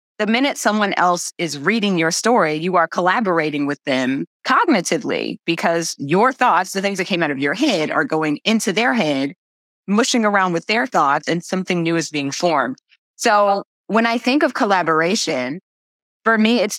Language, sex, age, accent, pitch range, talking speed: English, female, 20-39, American, 160-205 Hz, 180 wpm